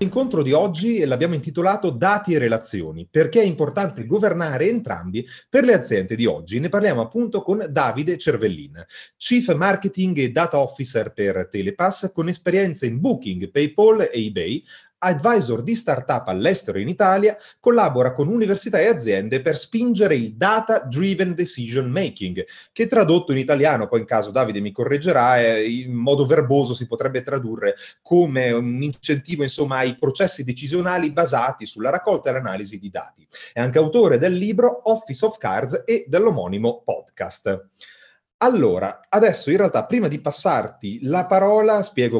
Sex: male